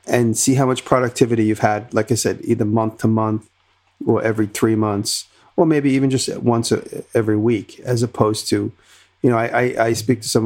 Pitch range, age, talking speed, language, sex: 105-130 Hz, 40-59, 200 wpm, English, male